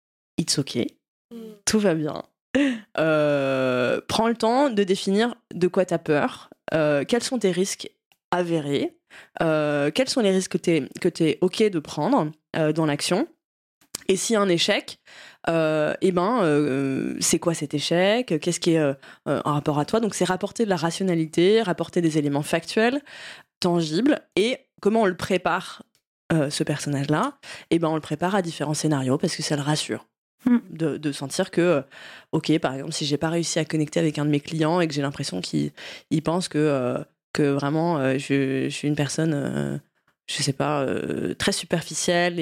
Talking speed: 190 wpm